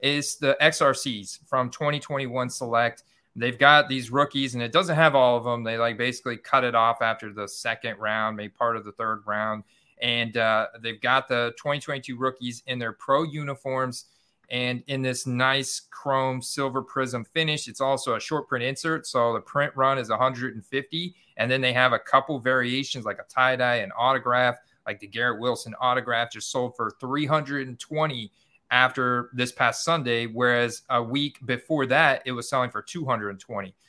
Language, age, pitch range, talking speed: English, 30-49, 120-135 Hz, 175 wpm